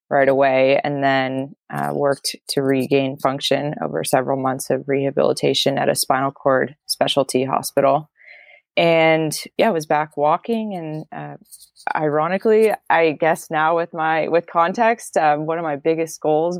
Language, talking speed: English, 150 wpm